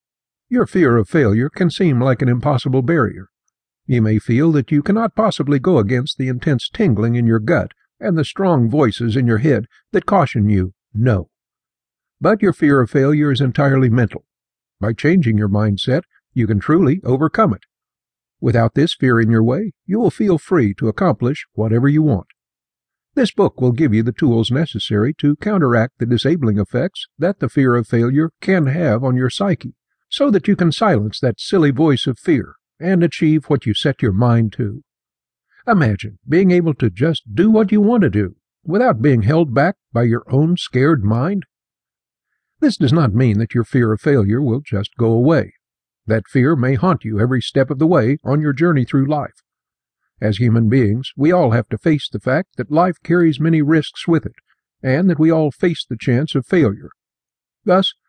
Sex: male